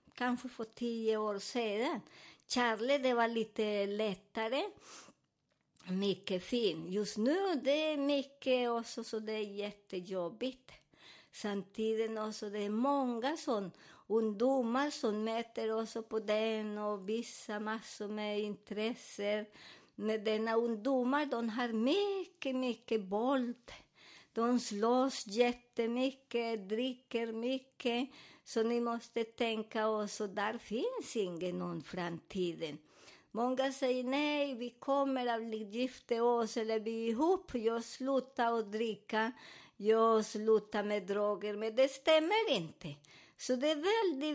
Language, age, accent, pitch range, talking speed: Swedish, 50-69, American, 215-255 Hz, 125 wpm